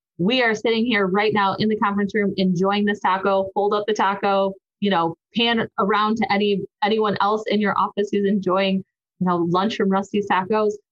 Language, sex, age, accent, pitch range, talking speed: English, female, 20-39, American, 185-220 Hz, 200 wpm